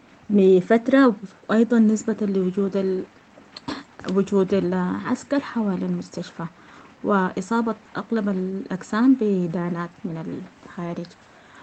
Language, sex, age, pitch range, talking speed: English, female, 20-39, 190-220 Hz, 75 wpm